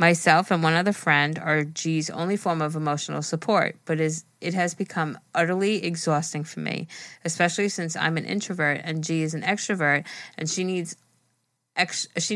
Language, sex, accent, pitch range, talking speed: English, female, American, 155-175 Hz, 160 wpm